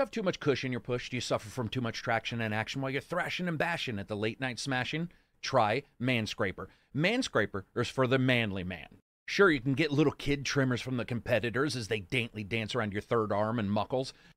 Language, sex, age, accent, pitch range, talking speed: English, male, 40-59, American, 120-170 Hz, 230 wpm